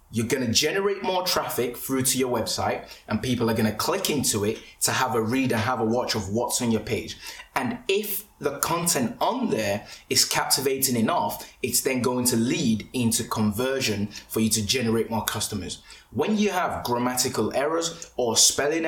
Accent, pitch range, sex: British, 115-145 Hz, male